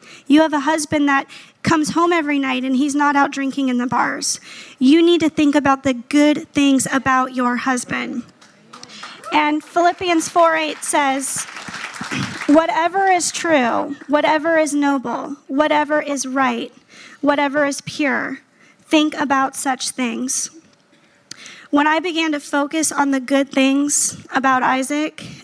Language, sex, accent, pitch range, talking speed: English, female, American, 265-310 Hz, 140 wpm